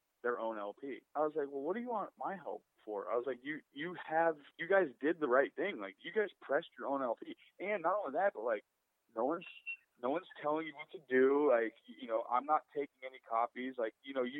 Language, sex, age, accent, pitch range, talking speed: English, male, 30-49, American, 125-185 Hz, 250 wpm